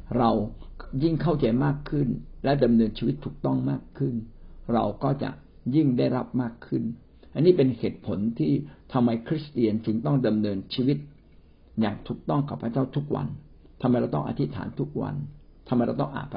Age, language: 60-79, Thai